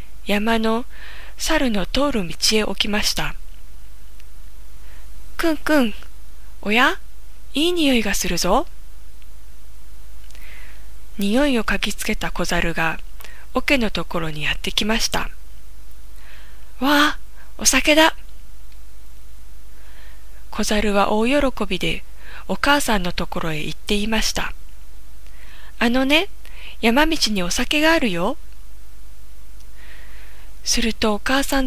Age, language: 20-39, Japanese